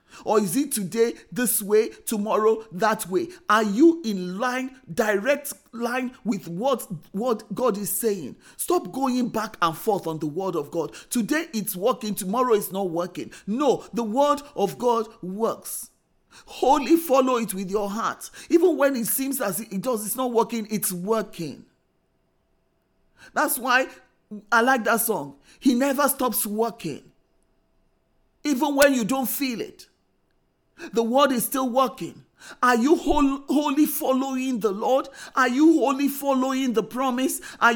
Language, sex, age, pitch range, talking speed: English, male, 40-59, 215-275 Hz, 155 wpm